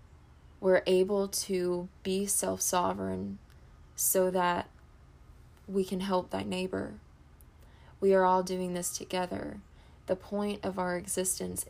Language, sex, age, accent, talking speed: English, female, 20-39, American, 120 wpm